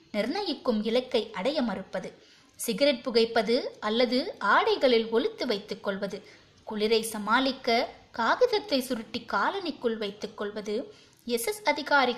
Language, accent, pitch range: Tamil, native, 215-280 Hz